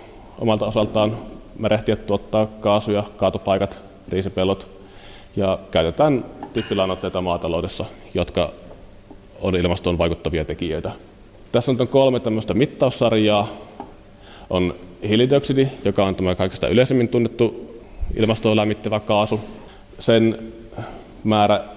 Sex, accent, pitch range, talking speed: male, native, 90-110 Hz, 90 wpm